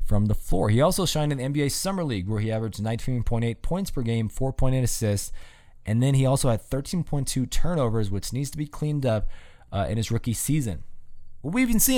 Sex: male